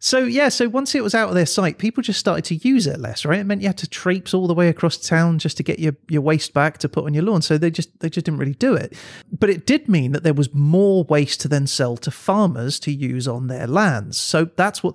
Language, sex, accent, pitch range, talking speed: English, male, British, 145-185 Hz, 295 wpm